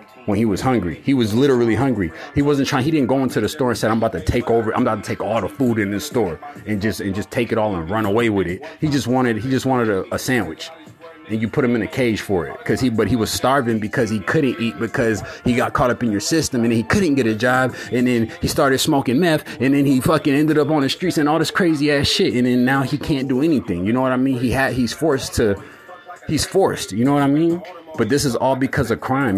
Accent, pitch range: American, 115-140 Hz